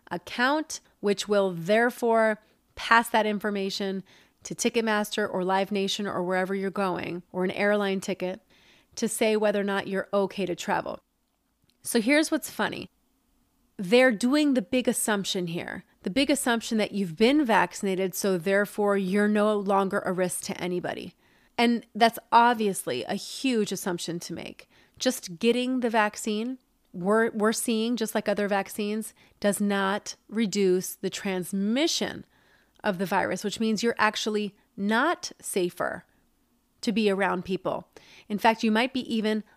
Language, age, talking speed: English, 30-49, 150 wpm